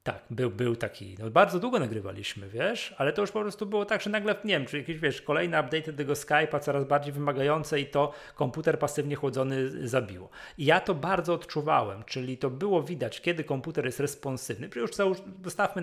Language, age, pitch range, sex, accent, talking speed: Polish, 30-49, 120-170 Hz, male, native, 195 wpm